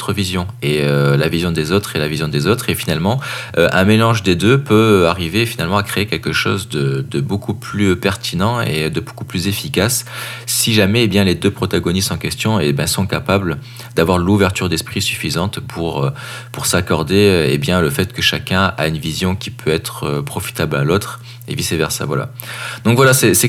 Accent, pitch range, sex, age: French, 85-110 Hz, male, 20-39